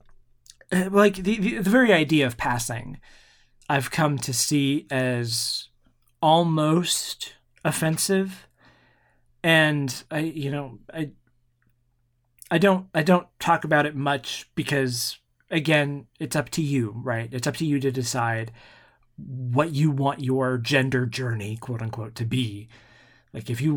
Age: 30-49